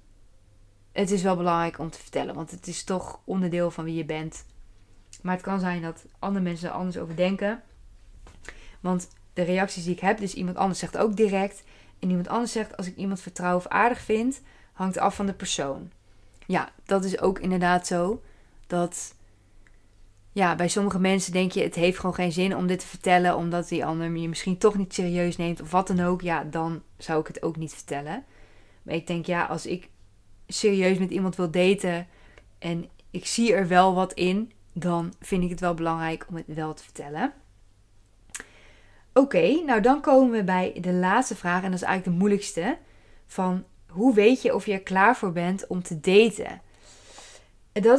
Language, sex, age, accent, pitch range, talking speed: Dutch, female, 20-39, Dutch, 165-195 Hz, 195 wpm